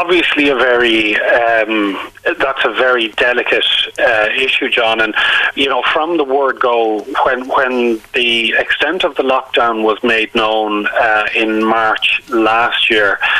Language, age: English, 30-49